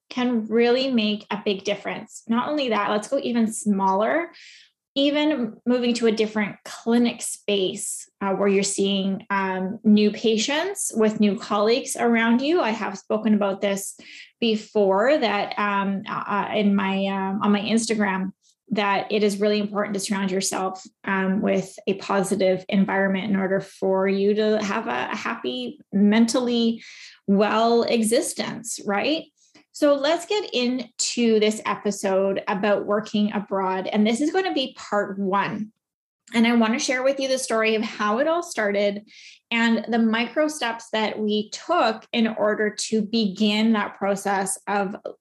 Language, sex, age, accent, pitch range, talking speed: English, female, 20-39, American, 200-235 Hz, 155 wpm